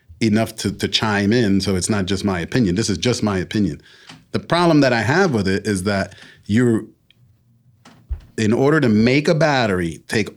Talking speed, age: 190 wpm, 40-59